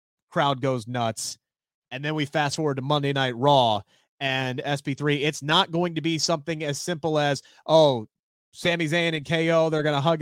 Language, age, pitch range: English, 30-49, 140-180 Hz